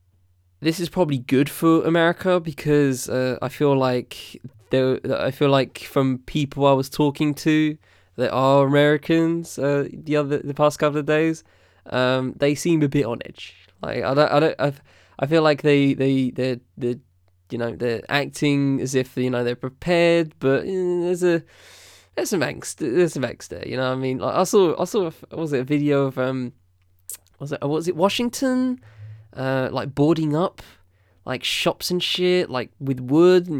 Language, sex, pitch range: English, male, 125-155 Hz